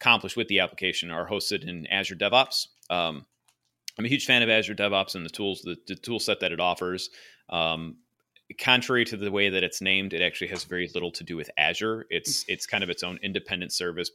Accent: American